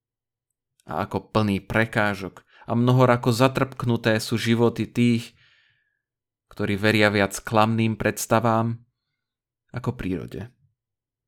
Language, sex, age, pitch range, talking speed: Slovak, male, 30-49, 110-125 Hz, 90 wpm